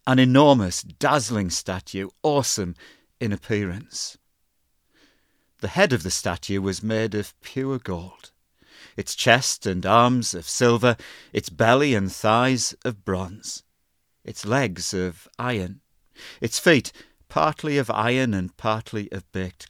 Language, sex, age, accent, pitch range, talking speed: English, male, 50-69, British, 95-120 Hz, 130 wpm